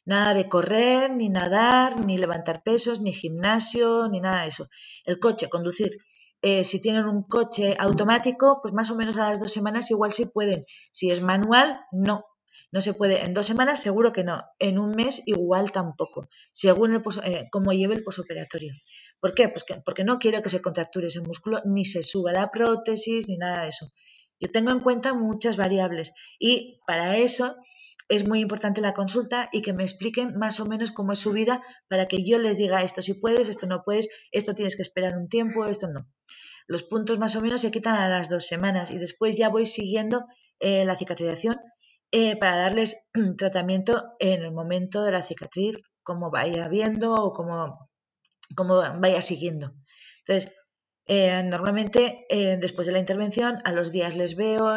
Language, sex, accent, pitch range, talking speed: Spanish, female, Spanish, 185-230 Hz, 195 wpm